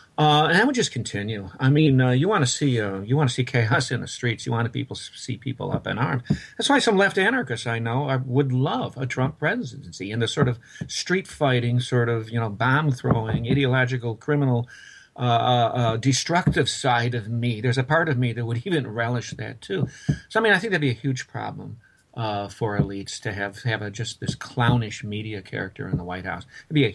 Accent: American